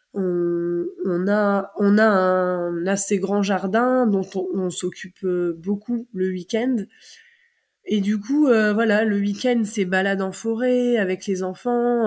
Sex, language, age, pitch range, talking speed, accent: female, French, 20-39, 190-230 Hz, 140 wpm, French